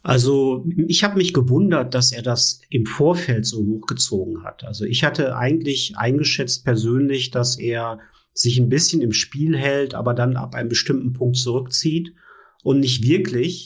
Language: German